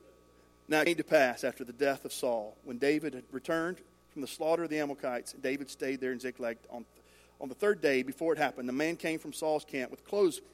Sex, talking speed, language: male, 235 wpm, English